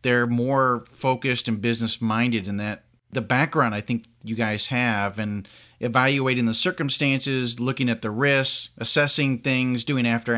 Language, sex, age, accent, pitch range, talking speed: English, male, 40-59, American, 115-135 Hz, 150 wpm